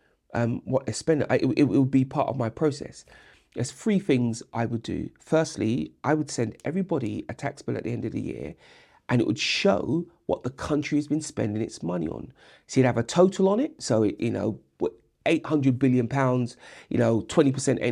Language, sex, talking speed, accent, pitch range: English, male, 210 wpm, British, 115-150 Hz